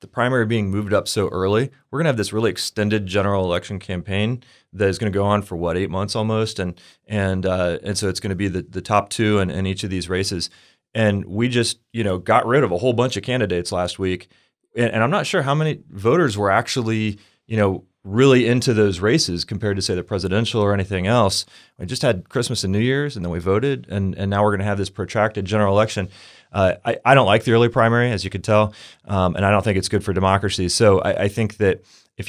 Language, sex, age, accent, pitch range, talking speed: English, male, 30-49, American, 95-110 Hz, 245 wpm